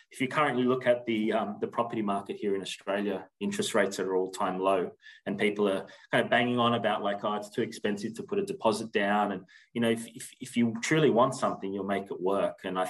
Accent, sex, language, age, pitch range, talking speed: Australian, male, English, 20-39, 95-110 Hz, 245 wpm